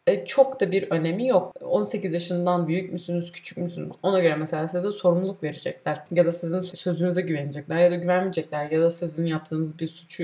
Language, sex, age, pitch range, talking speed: Turkish, female, 20-39, 170-230 Hz, 195 wpm